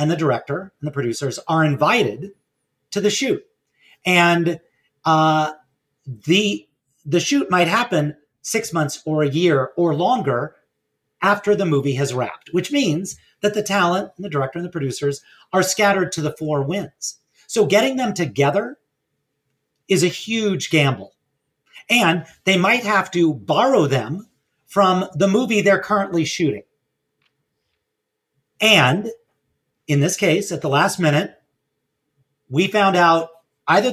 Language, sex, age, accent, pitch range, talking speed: English, male, 40-59, American, 145-195 Hz, 140 wpm